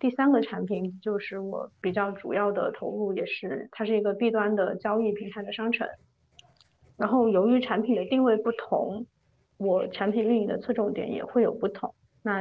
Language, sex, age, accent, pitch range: Chinese, female, 20-39, native, 205-235 Hz